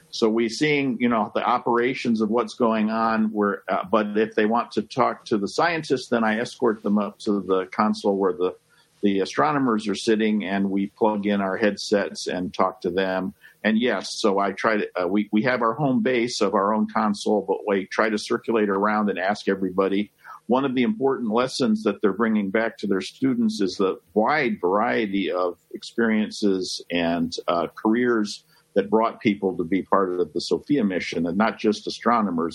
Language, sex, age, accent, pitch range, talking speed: English, male, 50-69, American, 100-115 Hz, 195 wpm